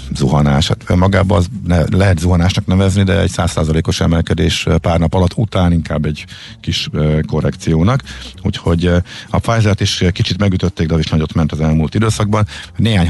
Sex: male